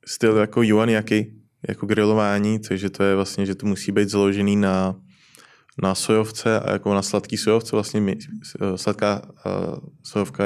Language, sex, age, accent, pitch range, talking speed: Czech, male, 20-39, native, 100-110 Hz, 145 wpm